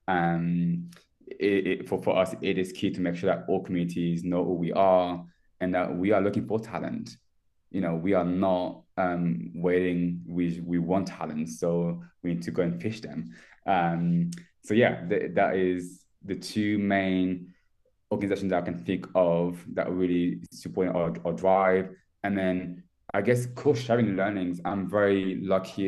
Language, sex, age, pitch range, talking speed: English, male, 20-39, 85-95 Hz, 175 wpm